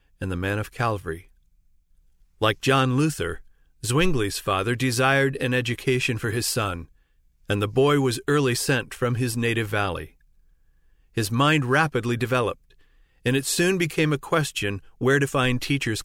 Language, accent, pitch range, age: English, American, 105-140 Hz, 40-59